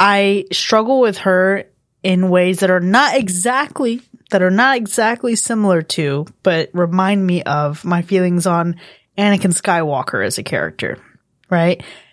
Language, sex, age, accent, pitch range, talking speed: English, female, 20-39, American, 175-215 Hz, 145 wpm